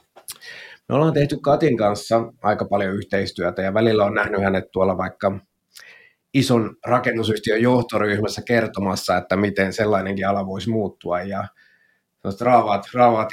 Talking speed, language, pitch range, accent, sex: 120 wpm, Finnish, 100-120 Hz, native, male